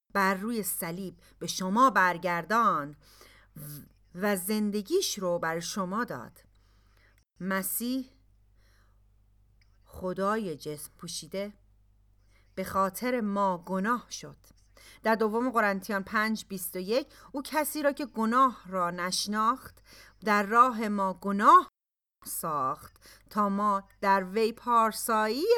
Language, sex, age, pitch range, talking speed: Persian, female, 40-59, 180-235 Hz, 100 wpm